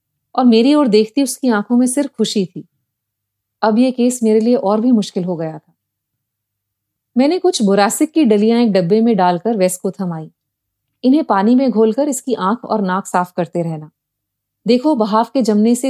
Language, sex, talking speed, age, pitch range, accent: Hindi, female, 185 wpm, 30-49, 165-265 Hz, native